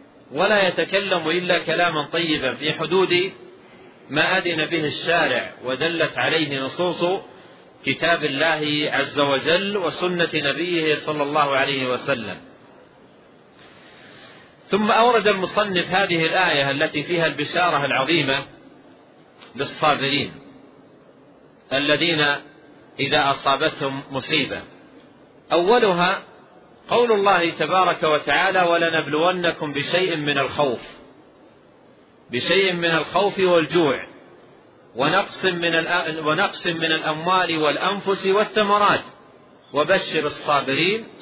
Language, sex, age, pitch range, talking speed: Arabic, male, 40-59, 145-185 Hz, 85 wpm